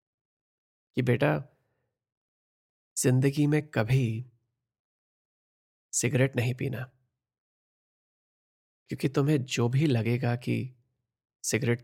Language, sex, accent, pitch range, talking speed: Hindi, male, native, 110-130 Hz, 75 wpm